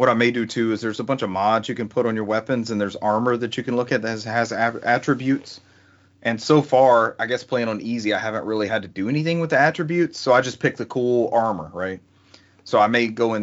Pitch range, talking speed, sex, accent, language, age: 95-115 Hz, 270 wpm, male, American, English, 30-49